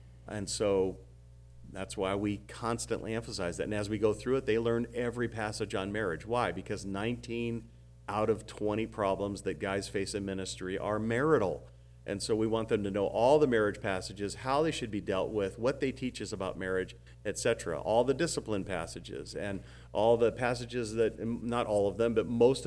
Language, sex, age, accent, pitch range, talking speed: English, male, 40-59, American, 95-120 Hz, 195 wpm